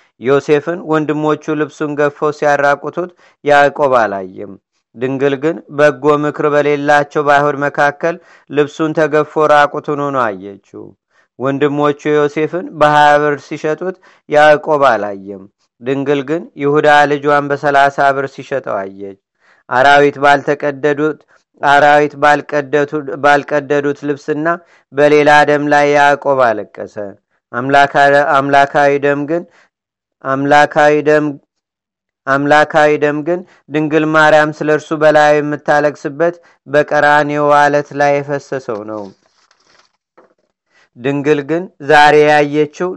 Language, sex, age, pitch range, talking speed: Amharic, male, 40-59, 140-150 Hz, 90 wpm